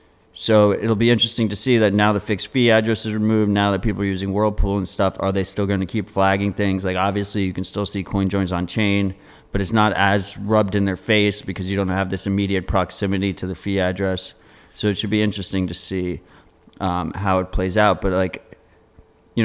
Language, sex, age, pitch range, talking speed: English, male, 30-49, 95-105 Hz, 230 wpm